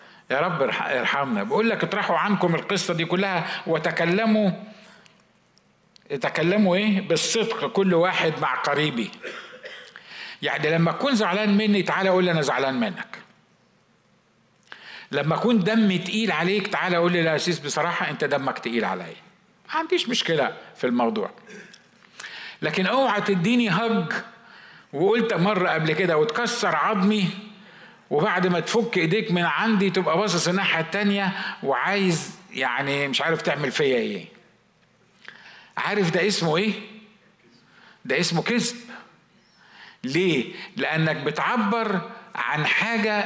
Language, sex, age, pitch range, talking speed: Arabic, male, 50-69, 160-215 Hz, 120 wpm